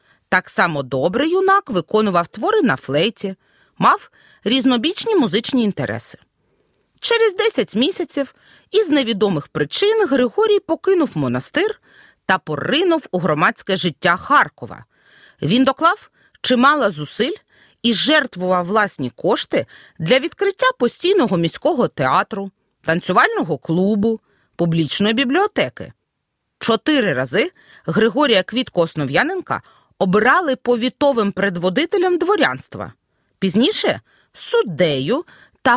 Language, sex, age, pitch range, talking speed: Ukrainian, female, 40-59, 190-315 Hz, 95 wpm